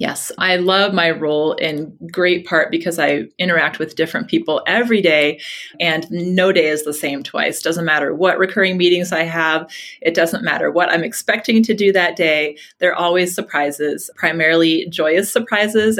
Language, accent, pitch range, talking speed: English, American, 160-195 Hz, 175 wpm